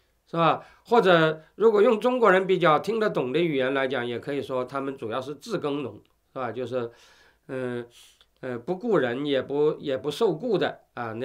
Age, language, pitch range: 50-69, Chinese, 120-165 Hz